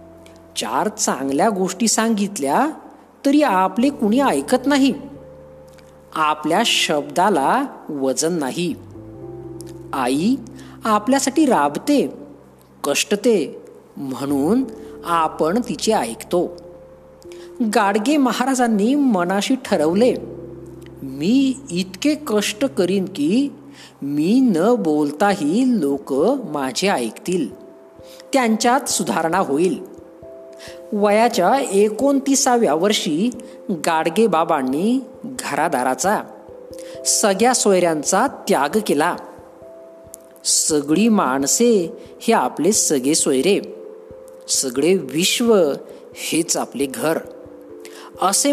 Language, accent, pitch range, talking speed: Marathi, native, 155-255 Hz, 75 wpm